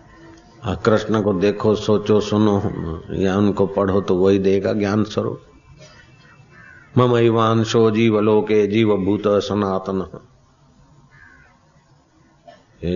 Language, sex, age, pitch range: Hindi, male, 50-69, 95-105 Hz